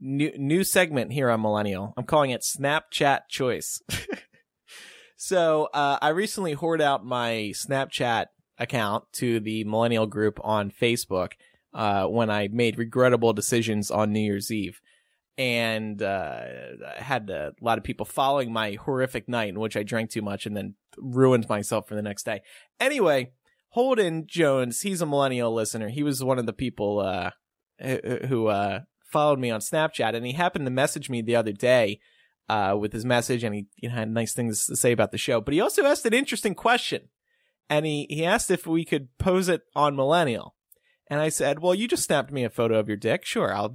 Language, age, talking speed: English, 20-39, 190 wpm